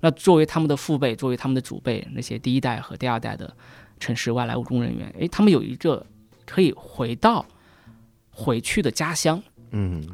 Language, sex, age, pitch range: Chinese, male, 20-39, 115-150 Hz